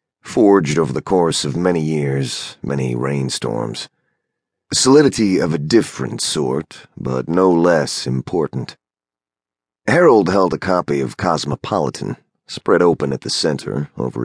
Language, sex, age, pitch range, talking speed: English, male, 30-49, 65-85 Hz, 125 wpm